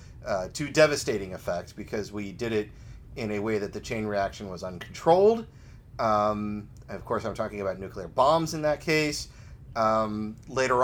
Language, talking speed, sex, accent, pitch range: English, 170 wpm, male, American, 110-135 Hz